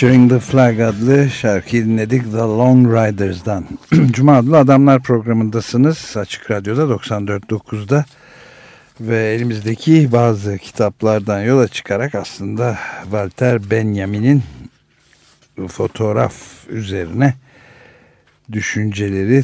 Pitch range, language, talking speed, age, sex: 100-130 Hz, Turkish, 85 wpm, 60-79, male